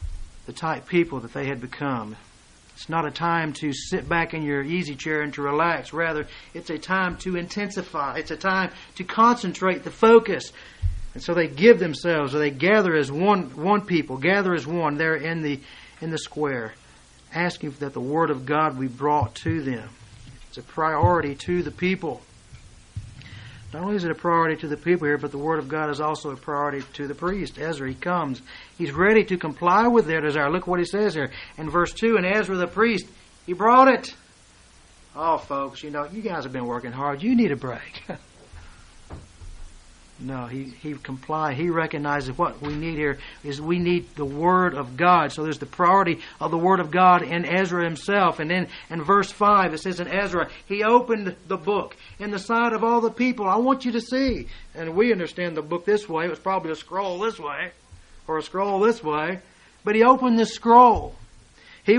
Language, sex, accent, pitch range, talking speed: English, male, American, 140-190 Hz, 205 wpm